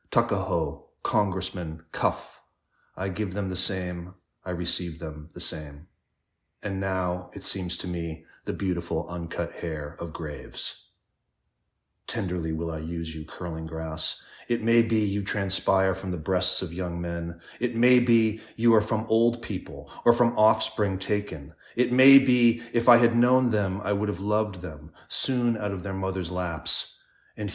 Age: 30-49